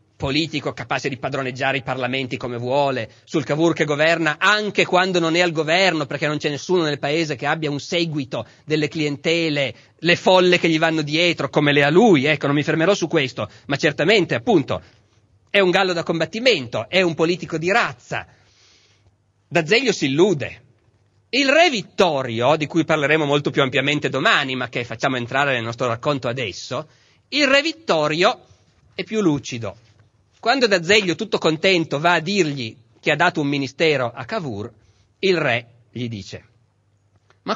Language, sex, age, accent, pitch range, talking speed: Italian, male, 30-49, native, 115-175 Hz, 170 wpm